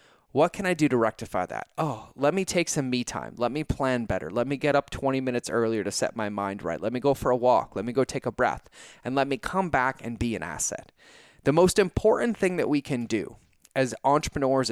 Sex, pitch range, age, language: male, 120-150 Hz, 20-39, English